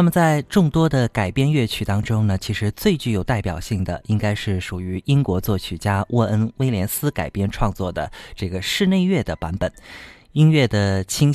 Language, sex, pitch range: Chinese, male, 95-140 Hz